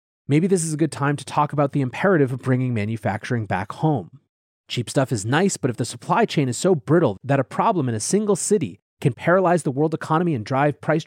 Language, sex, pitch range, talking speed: English, male, 130-175 Hz, 235 wpm